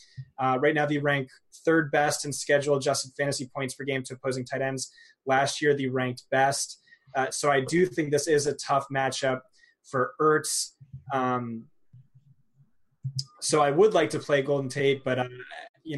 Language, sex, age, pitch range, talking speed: English, male, 20-39, 130-150 Hz, 175 wpm